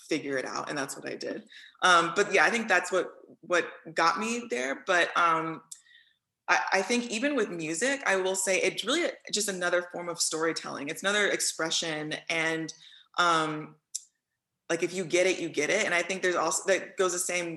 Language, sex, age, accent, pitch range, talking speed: English, female, 20-39, American, 155-190 Hz, 200 wpm